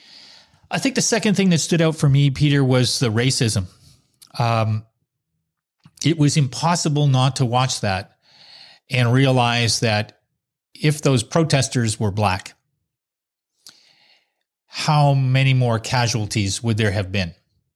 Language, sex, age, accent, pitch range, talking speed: English, male, 40-59, American, 120-160 Hz, 130 wpm